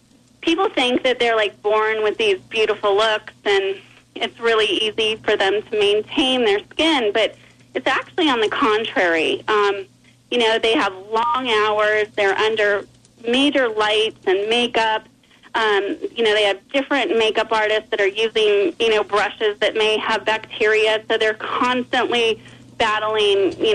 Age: 30-49